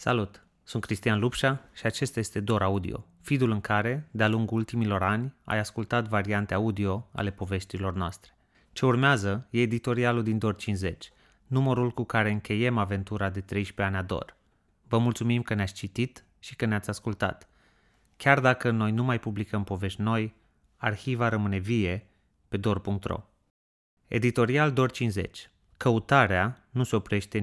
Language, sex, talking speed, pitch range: Romanian, male, 150 wpm, 100-120 Hz